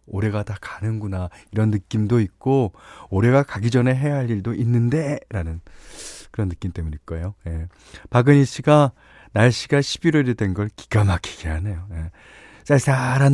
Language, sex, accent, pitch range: Korean, male, native, 90-140 Hz